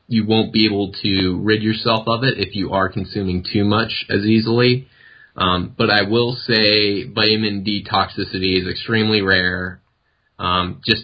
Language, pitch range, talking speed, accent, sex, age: English, 95-110 Hz, 165 wpm, American, male, 20-39